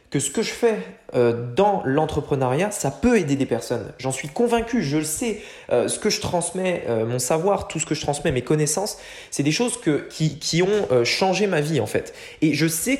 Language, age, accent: English, 20-39, French